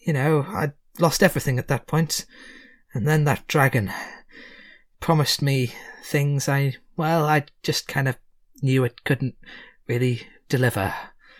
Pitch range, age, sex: 120-160 Hz, 20-39, male